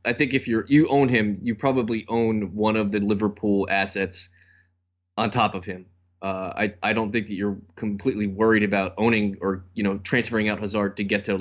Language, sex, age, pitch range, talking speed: English, male, 20-39, 95-110 Hz, 210 wpm